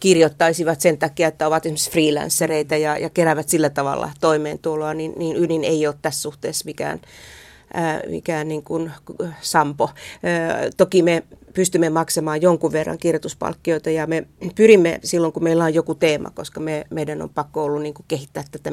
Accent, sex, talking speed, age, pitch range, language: native, female, 165 wpm, 30-49, 155-170 Hz, Finnish